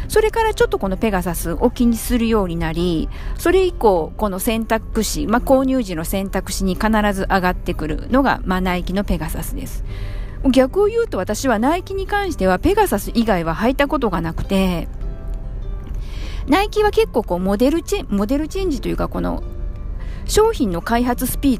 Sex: female